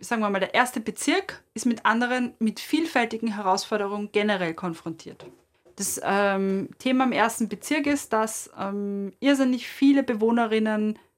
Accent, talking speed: German, 140 wpm